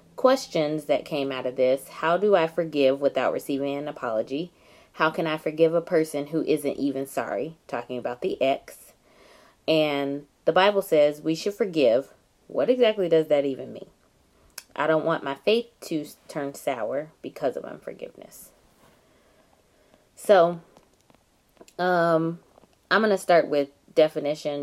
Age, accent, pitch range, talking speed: 20-39, American, 140-180 Hz, 145 wpm